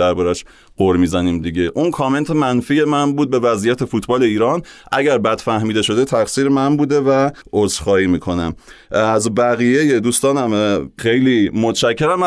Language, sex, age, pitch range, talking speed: Persian, male, 30-49, 100-130 Hz, 135 wpm